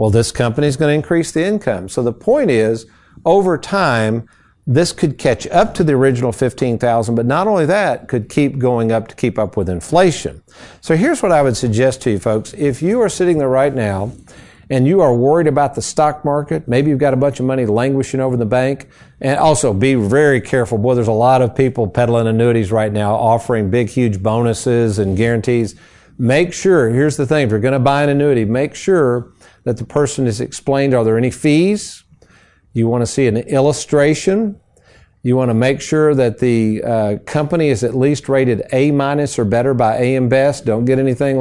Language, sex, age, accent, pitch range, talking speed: English, male, 50-69, American, 115-140 Hz, 210 wpm